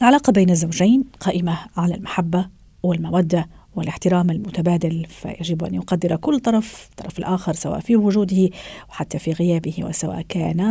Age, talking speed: 40-59, 135 wpm